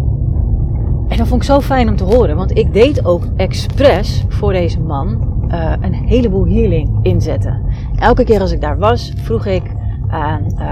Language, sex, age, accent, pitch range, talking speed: Dutch, female, 30-49, Dutch, 95-110 Hz, 175 wpm